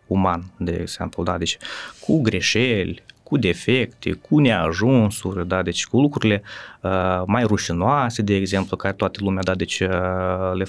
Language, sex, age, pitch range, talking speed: Romanian, male, 20-39, 95-120 Hz, 140 wpm